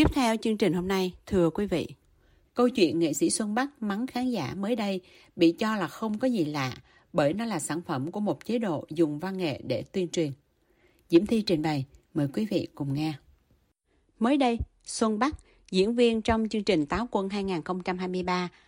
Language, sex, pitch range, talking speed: Vietnamese, female, 170-230 Hz, 200 wpm